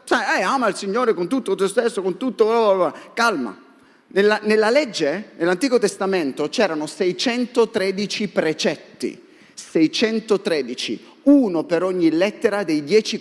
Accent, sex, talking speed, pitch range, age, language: native, male, 120 wpm, 185-290 Hz, 30-49, Italian